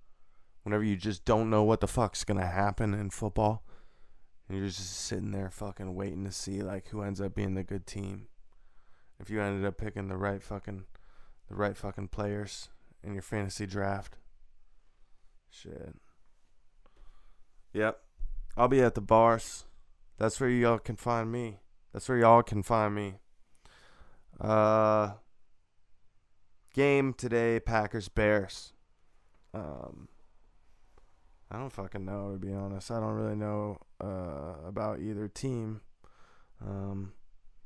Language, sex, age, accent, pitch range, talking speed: English, male, 20-39, American, 95-110 Hz, 135 wpm